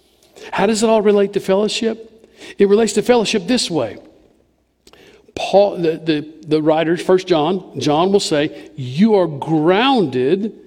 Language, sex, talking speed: English, male, 145 wpm